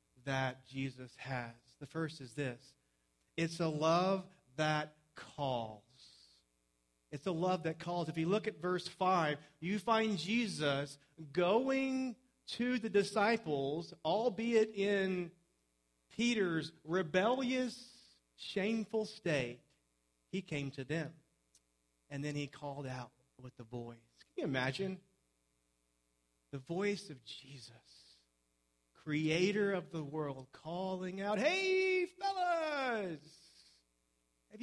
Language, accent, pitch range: English, American, 120-180 Hz